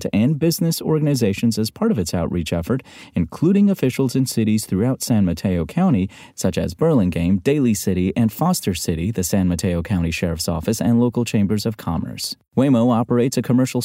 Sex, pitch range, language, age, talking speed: male, 95-135 Hz, English, 30-49, 175 wpm